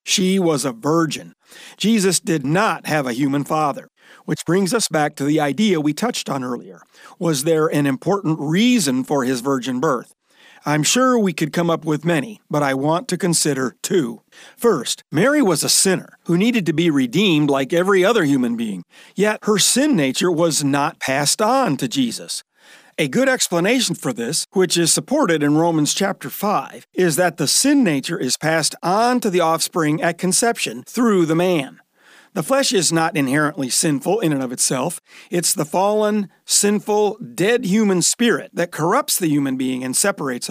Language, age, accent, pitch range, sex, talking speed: English, 50-69, American, 145-200 Hz, male, 180 wpm